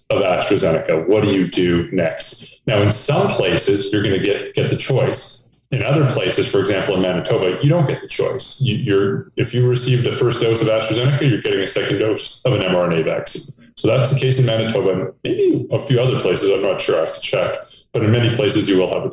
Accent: American